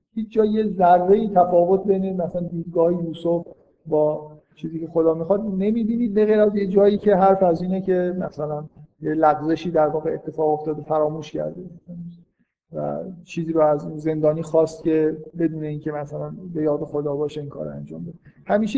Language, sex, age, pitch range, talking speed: Persian, male, 50-69, 150-180 Hz, 170 wpm